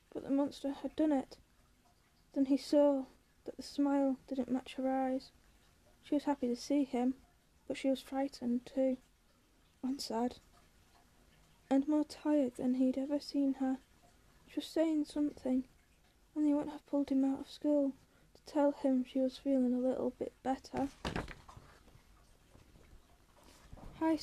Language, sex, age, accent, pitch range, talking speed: English, female, 10-29, British, 255-285 Hz, 150 wpm